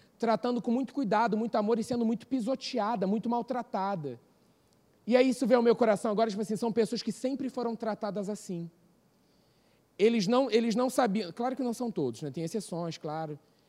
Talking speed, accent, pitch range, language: 190 wpm, Brazilian, 195-240 Hz, Portuguese